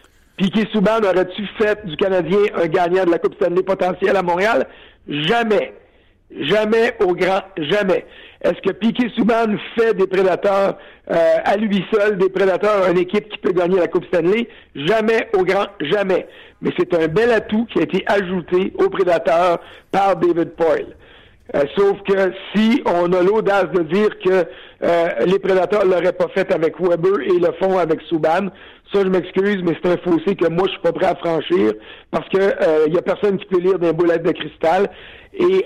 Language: French